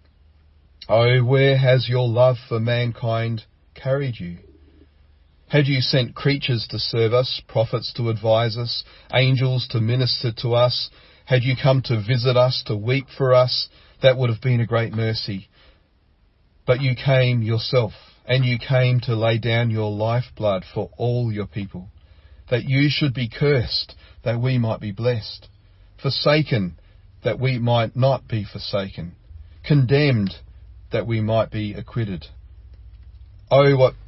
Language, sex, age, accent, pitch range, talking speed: English, male, 40-59, Australian, 95-125 Hz, 150 wpm